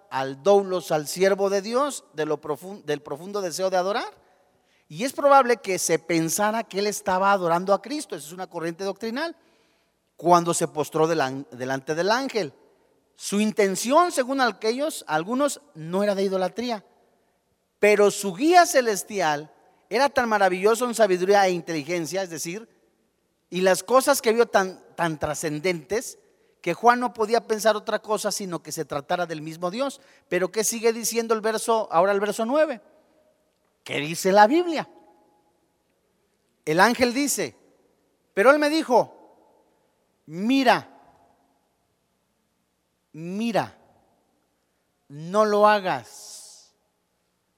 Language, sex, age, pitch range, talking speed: Spanish, male, 40-59, 165-235 Hz, 130 wpm